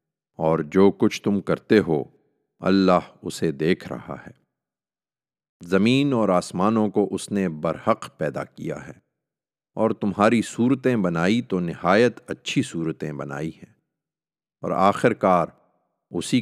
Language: Urdu